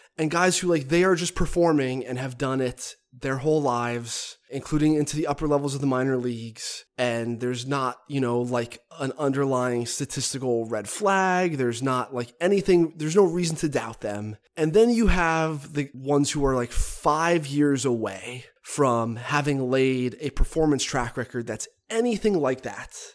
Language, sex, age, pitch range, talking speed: English, male, 20-39, 125-160 Hz, 175 wpm